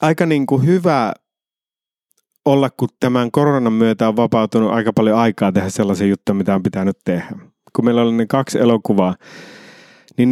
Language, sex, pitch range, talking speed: English, male, 105-145 Hz, 150 wpm